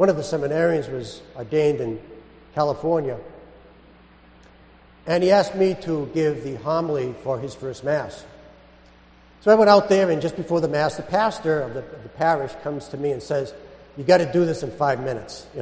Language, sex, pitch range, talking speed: English, male, 135-180 Hz, 195 wpm